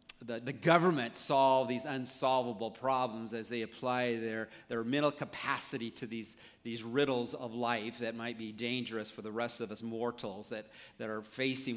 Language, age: English, 50-69